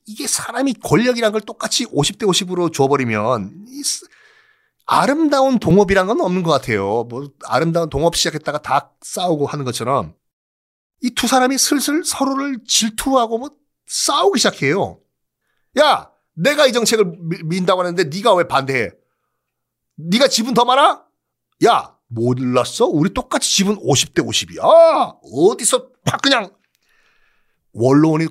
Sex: male